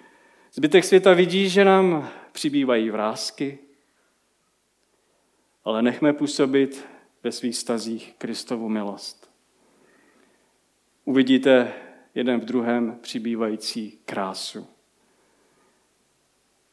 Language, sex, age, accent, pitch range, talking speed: Czech, male, 40-59, native, 120-155 Hz, 75 wpm